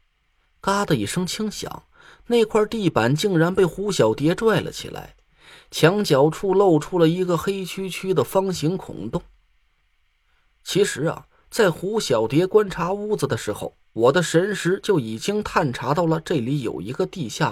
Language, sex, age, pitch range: Chinese, male, 20-39, 140-195 Hz